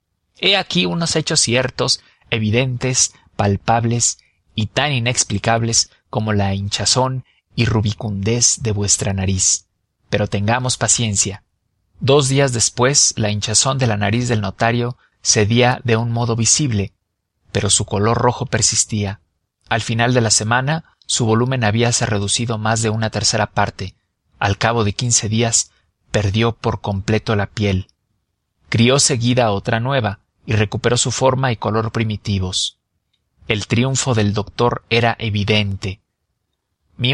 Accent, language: Mexican, English